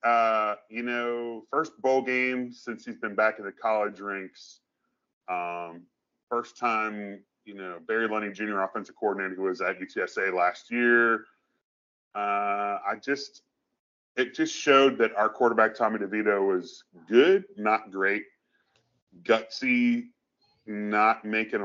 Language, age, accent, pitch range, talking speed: English, 30-49, American, 95-120 Hz, 135 wpm